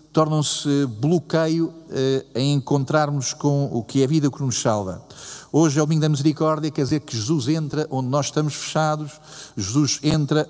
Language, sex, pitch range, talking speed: Portuguese, male, 130-155 Hz, 175 wpm